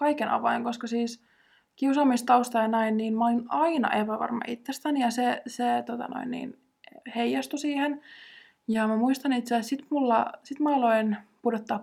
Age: 20-39